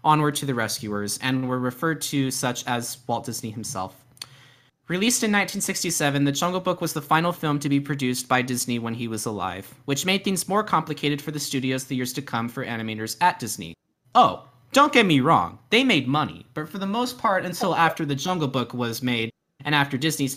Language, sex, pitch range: English, male, 115-160 Hz